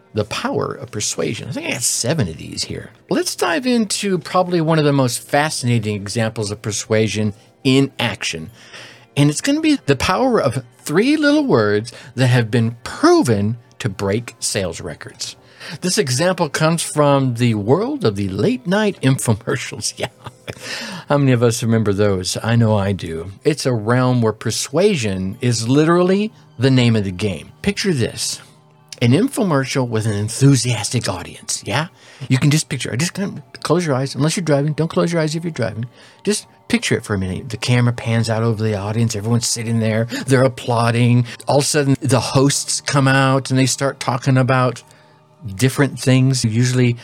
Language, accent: English, American